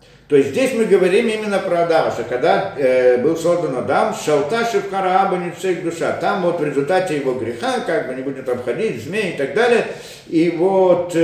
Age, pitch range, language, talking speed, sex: 50-69, 130-190 Hz, Russian, 185 wpm, male